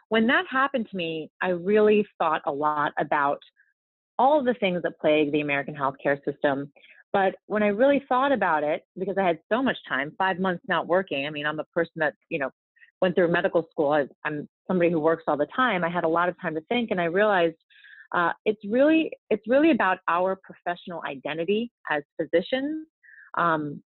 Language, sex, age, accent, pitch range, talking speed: English, female, 30-49, American, 150-200 Hz, 195 wpm